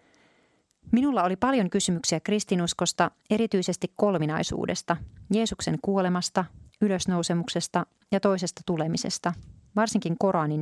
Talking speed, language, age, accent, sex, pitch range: 85 wpm, Finnish, 30-49, native, female, 165-205 Hz